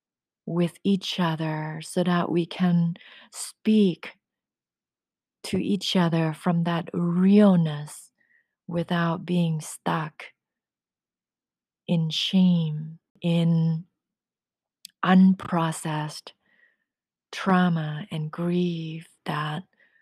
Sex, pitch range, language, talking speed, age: female, 165-185 Hz, English, 75 wpm, 30-49